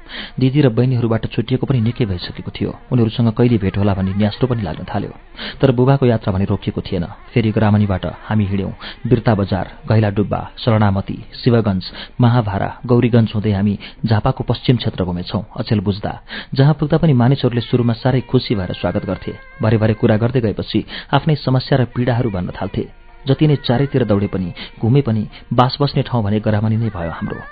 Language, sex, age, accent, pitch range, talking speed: English, male, 40-59, Indian, 105-130 Hz, 50 wpm